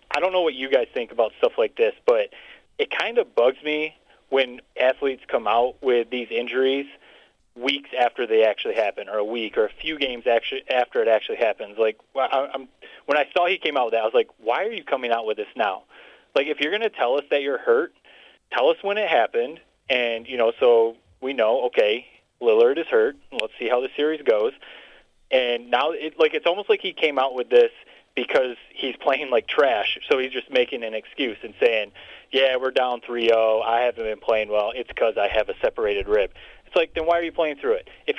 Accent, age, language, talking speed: American, 30-49, English, 225 wpm